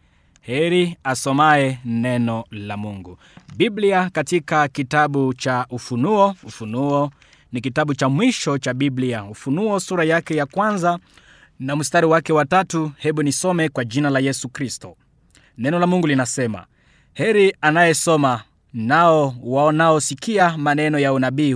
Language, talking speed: Swahili, 130 wpm